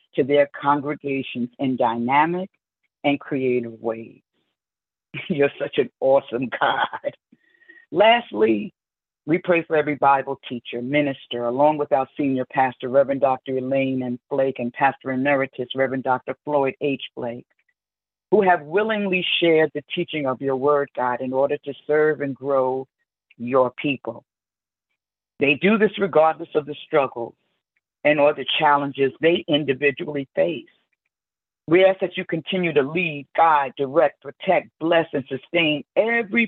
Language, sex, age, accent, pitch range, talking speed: English, female, 50-69, American, 130-170 Hz, 140 wpm